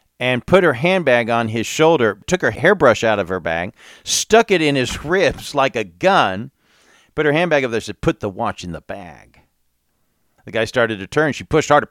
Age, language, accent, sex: 50-69, English, American, male